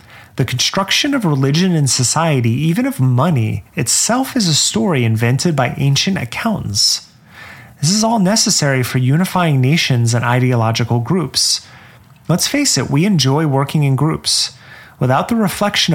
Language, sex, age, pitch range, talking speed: English, male, 30-49, 125-180 Hz, 145 wpm